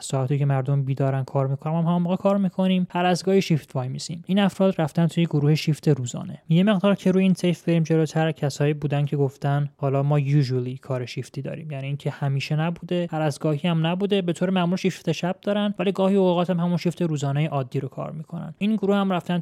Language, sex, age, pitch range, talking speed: Persian, male, 20-39, 140-170 Hz, 215 wpm